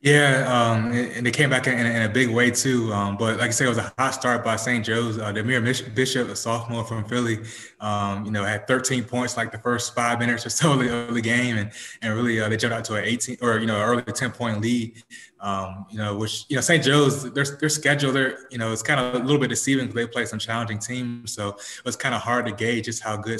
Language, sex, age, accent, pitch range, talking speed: English, male, 20-39, American, 105-120 Hz, 265 wpm